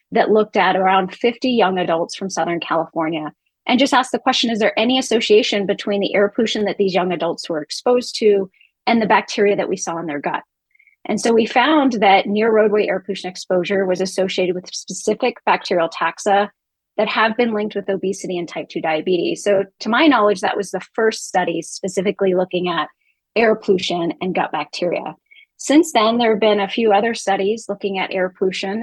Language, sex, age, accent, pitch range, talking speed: English, female, 30-49, American, 180-220 Hz, 195 wpm